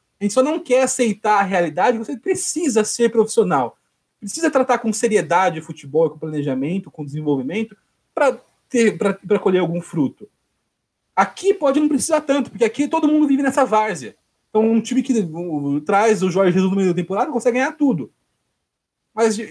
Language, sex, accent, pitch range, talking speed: Portuguese, male, Brazilian, 175-240 Hz, 165 wpm